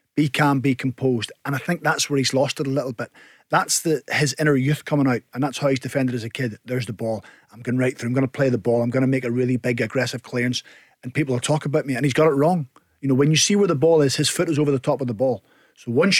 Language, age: English, 40-59